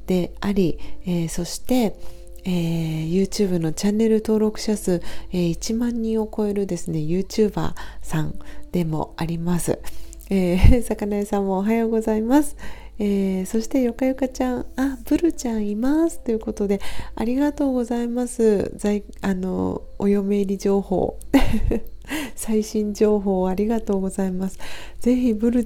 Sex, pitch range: female, 195-235 Hz